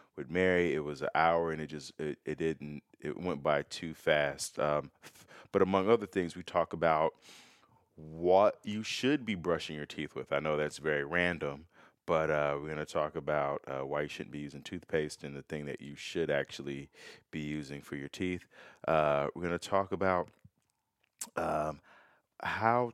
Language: English